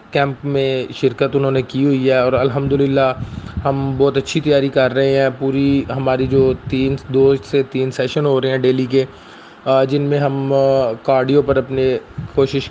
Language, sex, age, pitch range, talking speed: Urdu, male, 30-49, 130-140 Hz, 180 wpm